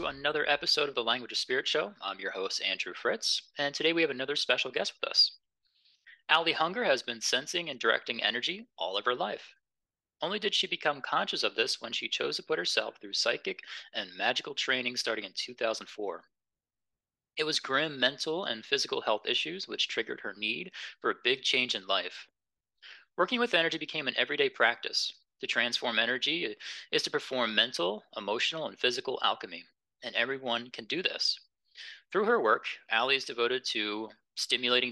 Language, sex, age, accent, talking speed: English, male, 30-49, American, 180 wpm